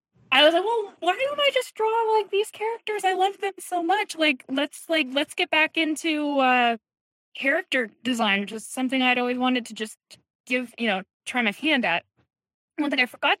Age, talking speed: 10-29, 205 wpm